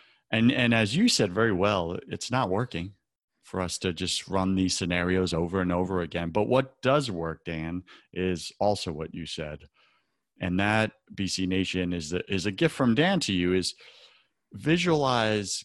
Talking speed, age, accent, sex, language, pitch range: 175 wpm, 30-49, American, male, English, 90-110 Hz